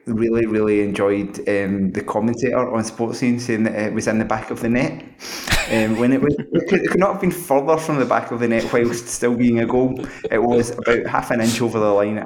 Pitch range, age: 100-120 Hz, 20-39